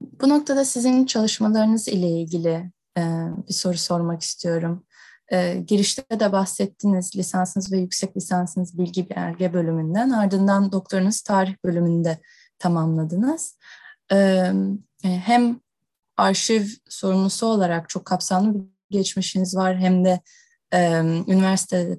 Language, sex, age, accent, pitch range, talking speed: Turkish, female, 10-29, native, 180-230 Hz, 100 wpm